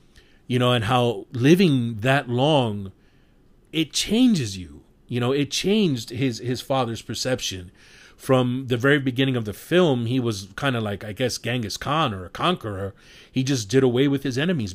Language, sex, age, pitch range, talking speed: English, male, 30-49, 110-135 Hz, 180 wpm